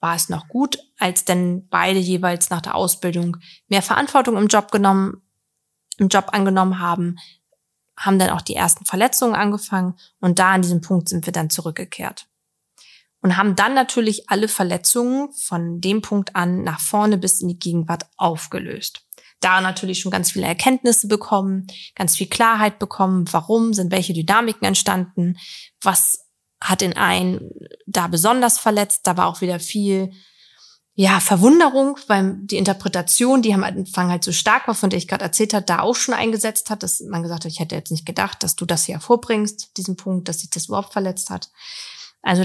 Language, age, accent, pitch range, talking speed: German, 20-39, German, 180-225 Hz, 180 wpm